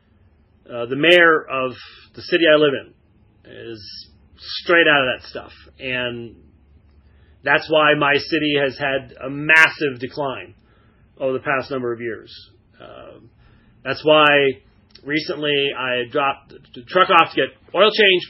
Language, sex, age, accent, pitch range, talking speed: English, male, 30-49, American, 115-160 Hz, 145 wpm